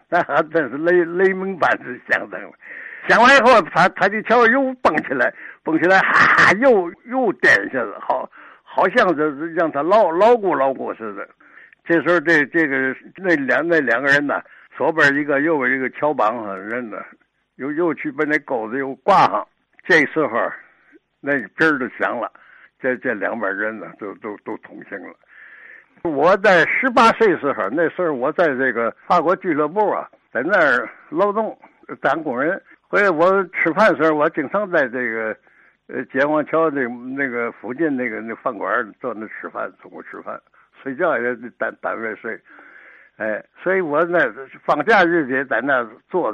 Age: 60-79